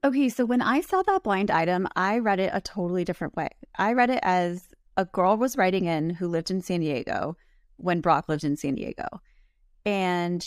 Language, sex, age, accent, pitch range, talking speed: English, female, 30-49, American, 160-195 Hz, 205 wpm